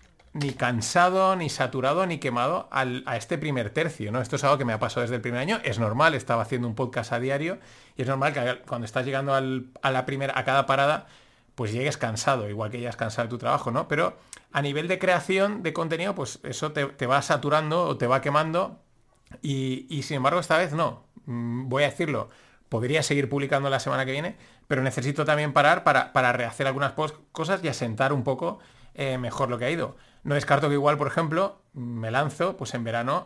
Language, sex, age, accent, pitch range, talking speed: Spanish, male, 30-49, Spanish, 120-145 Hz, 220 wpm